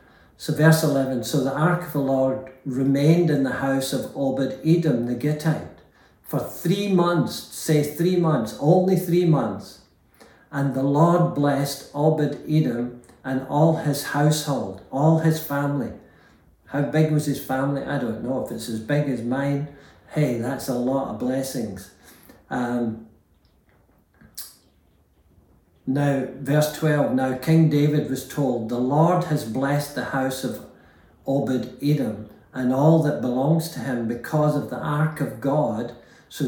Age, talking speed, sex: 60-79, 145 wpm, male